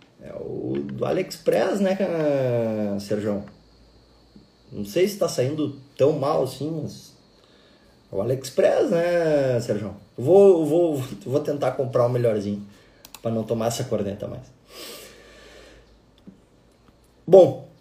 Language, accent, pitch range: Portuguese, Brazilian, 115-145 Hz